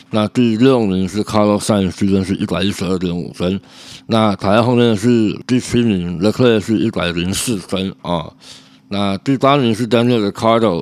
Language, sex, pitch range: Chinese, male, 90-115 Hz